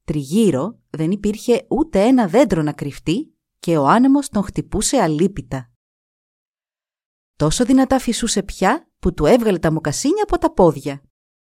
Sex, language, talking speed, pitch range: female, Greek, 135 wpm, 155-235 Hz